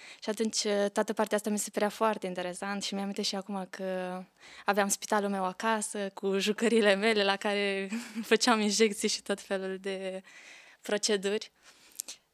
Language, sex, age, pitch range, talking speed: Romanian, female, 20-39, 195-220 Hz, 150 wpm